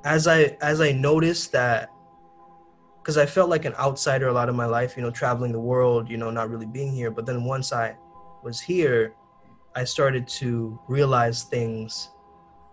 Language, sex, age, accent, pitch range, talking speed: English, male, 20-39, American, 120-155 Hz, 185 wpm